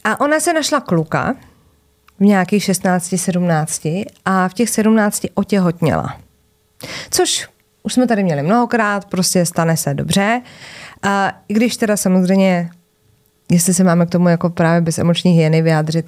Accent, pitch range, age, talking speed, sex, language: native, 170-225 Hz, 20-39, 145 wpm, female, Czech